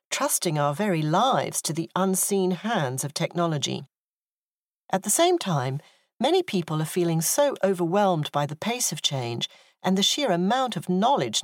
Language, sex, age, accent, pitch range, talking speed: English, female, 40-59, British, 155-200 Hz, 165 wpm